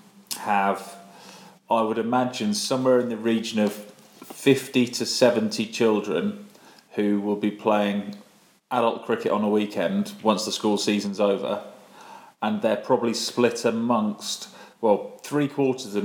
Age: 30-49